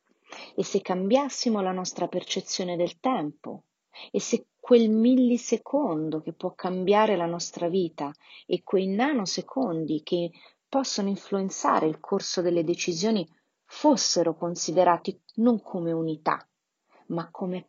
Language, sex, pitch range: Italian, female, 170-225 Hz